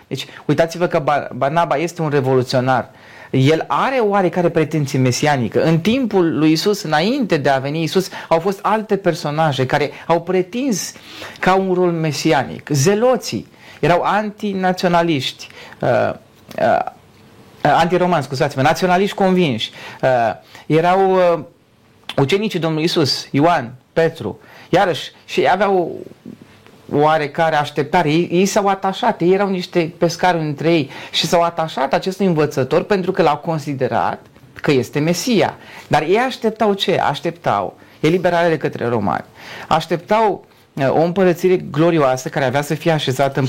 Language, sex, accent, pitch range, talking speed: Romanian, male, native, 145-195 Hz, 130 wpm